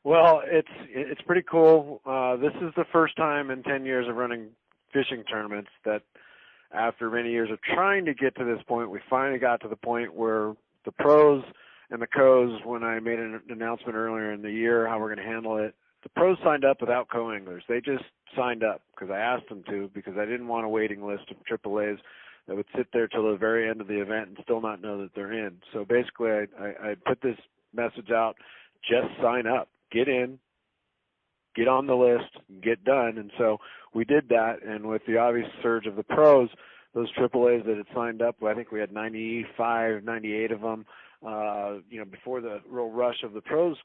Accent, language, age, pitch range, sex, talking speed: American, English, 40-59, 110-130 Hz, male, 215 wpm